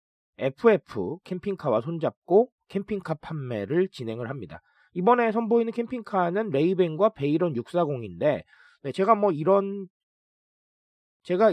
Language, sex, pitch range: Korean, male, 140-215 Hz